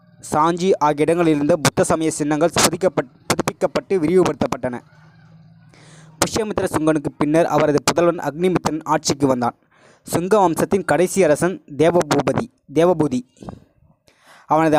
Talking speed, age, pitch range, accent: 95 wpm, 20-39, 155-185 Hz, native